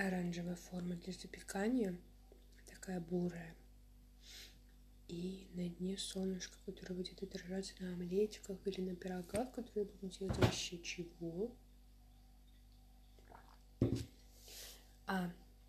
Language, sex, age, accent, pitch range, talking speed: Russian, female, 20-39, native, 180-205 Hz, 90 wpm